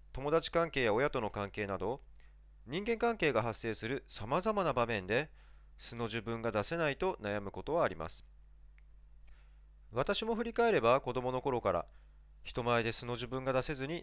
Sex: male